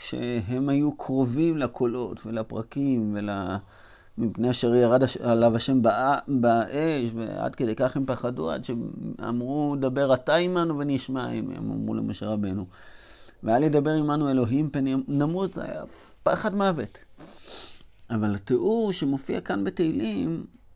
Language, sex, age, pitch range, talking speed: Hebrew, male, 30-49, 100-145 Hz, 125 wpm